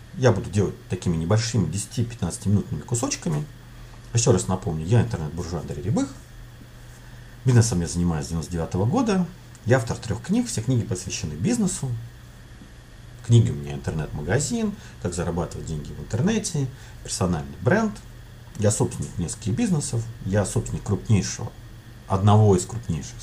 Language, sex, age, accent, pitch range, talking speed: Russian, male, 50-69, native, 95-125 Hz, 125 wpm